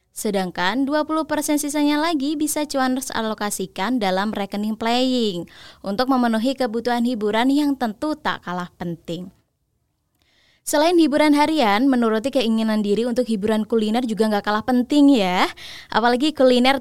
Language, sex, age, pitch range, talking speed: Indonesian, female, 20-39, 215-280 Hz, 125 wpm